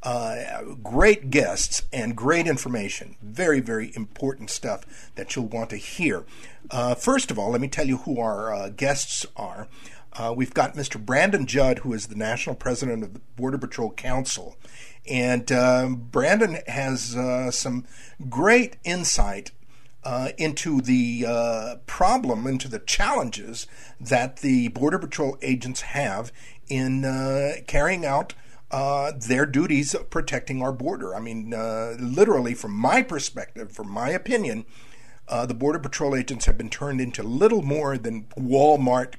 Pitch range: 120-140 Hz